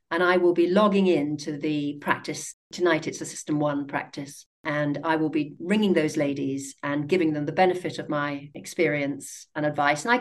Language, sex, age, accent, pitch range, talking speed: English, female, 50-69, British, 155-200 Hz, 200 wpm